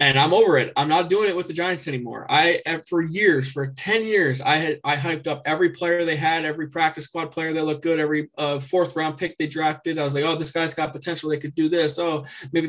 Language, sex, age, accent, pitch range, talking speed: English, male, 20-39, American, 140-170 Hz, 250 wpm